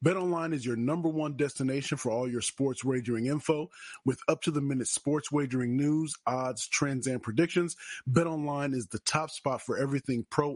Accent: American